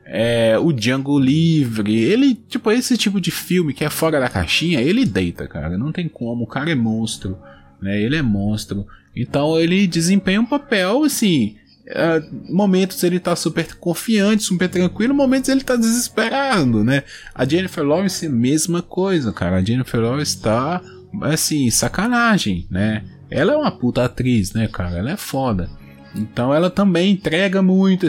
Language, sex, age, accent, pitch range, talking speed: Portuguese, male, 20-39, Brazilian, 110-170 Hz, 165 wpm